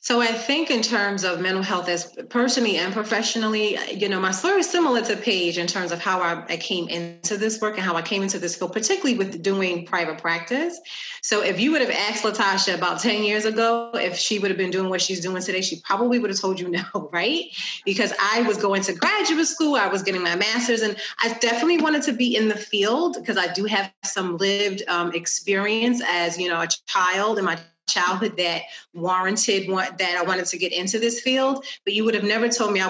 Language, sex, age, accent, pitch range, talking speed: English, female, 30-49, American, 180-230 Hz, 230 wpm